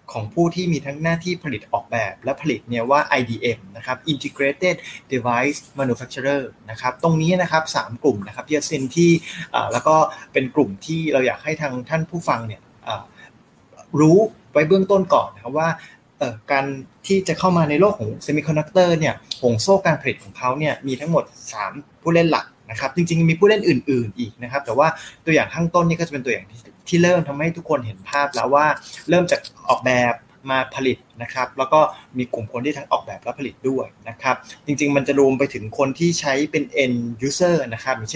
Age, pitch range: 20-39, 125-165 Hz